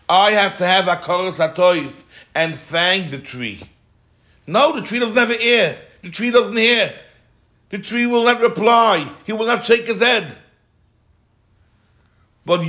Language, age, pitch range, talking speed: English, 60-79, 135-195 Hz, 145 wpm